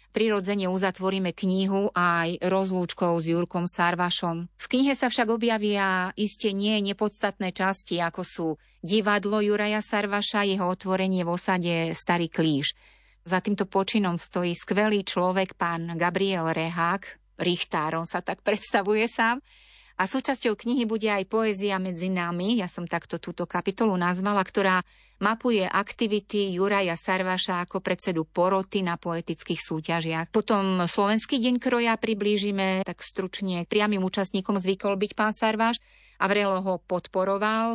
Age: 30-49